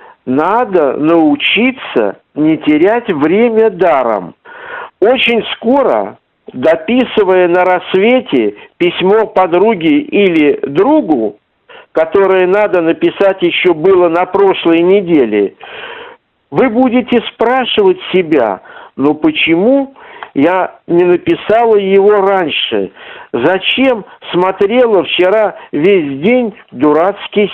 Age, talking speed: 50-69, 85 wpm